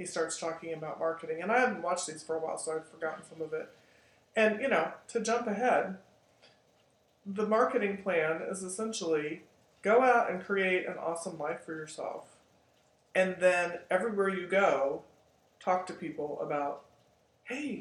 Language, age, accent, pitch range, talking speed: English, 40-59, American, 160-210 Hz, 165 wpm